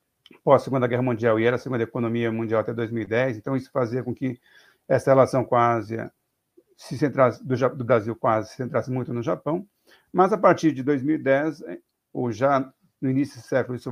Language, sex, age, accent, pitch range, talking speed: Portuguese, male, 60-79, Brazilian, 120-150 Hz, 185 wpm